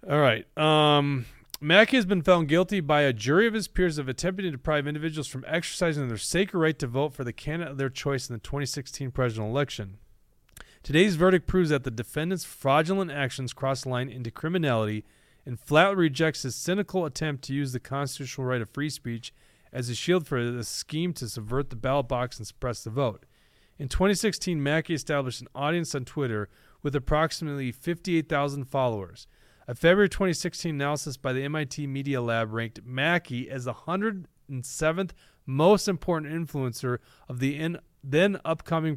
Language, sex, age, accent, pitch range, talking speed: English, male, 30-49, American, 125-165 Hz, 170 wpm